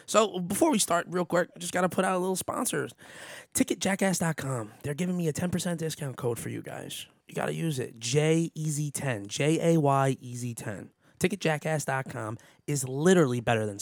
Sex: male